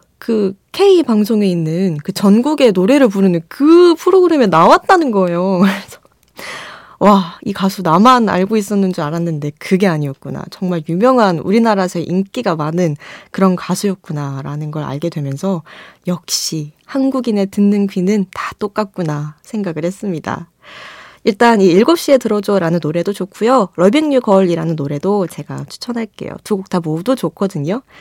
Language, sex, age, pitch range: Korean, female, 20-39, 170-230 Hz